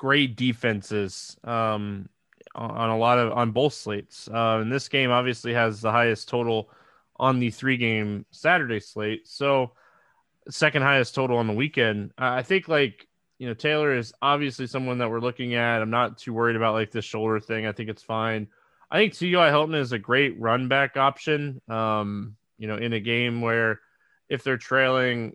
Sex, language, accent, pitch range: male, English, American, 110-135 Hz